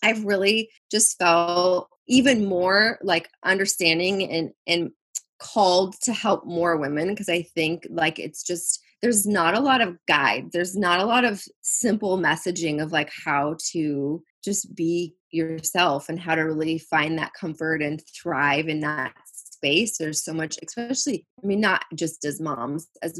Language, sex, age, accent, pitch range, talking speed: English, female, 20-39, American, 160-200 Hz, 165 wpm